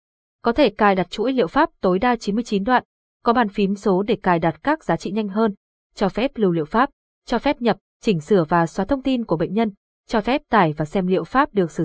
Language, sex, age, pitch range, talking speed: Vietnamese, female, 20-39, 180-235 Hz, 250 wpm